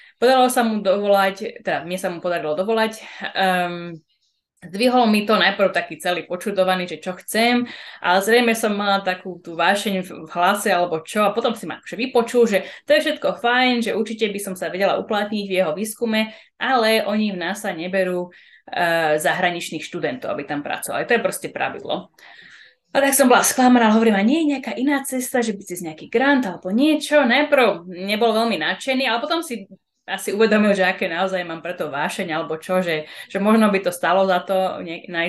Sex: female